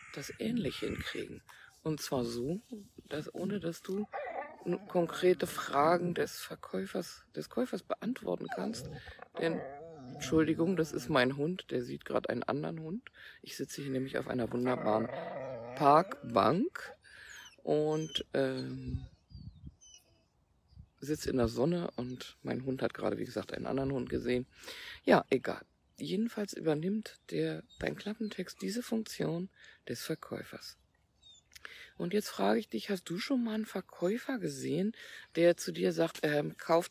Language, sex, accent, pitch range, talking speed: German, female, German, 130-185 Hz, 135 wpm